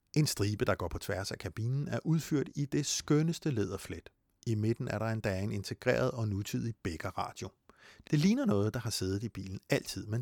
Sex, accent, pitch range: male, native, 100-135 Hz